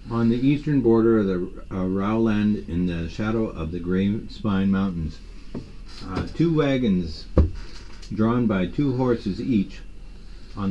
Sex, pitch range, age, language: male, 90-110 Hz, 50-69, English